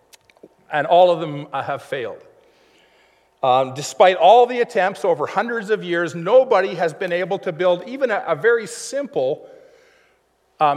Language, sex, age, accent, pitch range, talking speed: English, male, 50-69, American, 155-235 Hz, 150 wpm